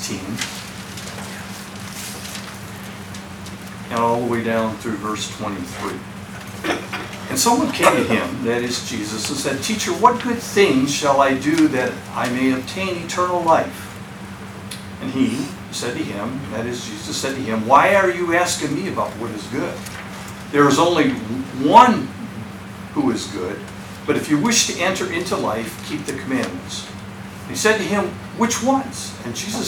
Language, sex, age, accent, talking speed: English, male, 60-79, American, 160 wpm